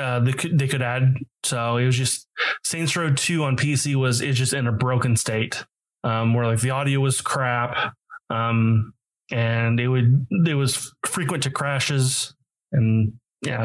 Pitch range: 120-155 Hz